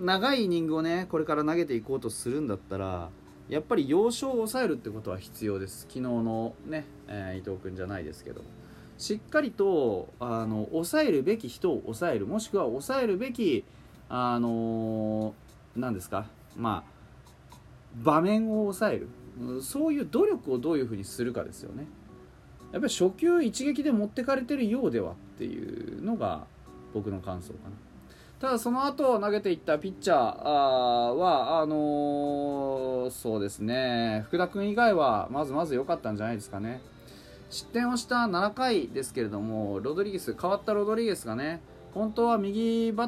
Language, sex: Japanese, male